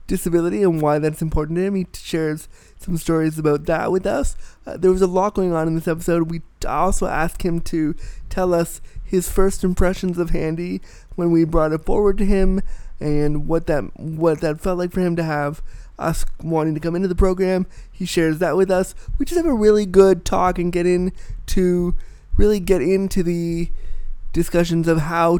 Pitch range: 150-180 Hz